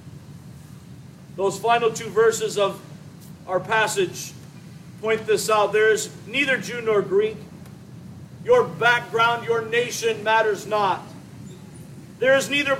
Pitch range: 185-255 Hz